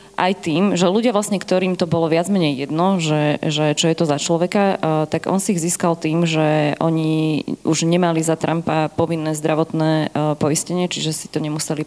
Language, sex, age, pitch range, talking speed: Slovak, female, 20-39, 150-170 Hz, 185 wpm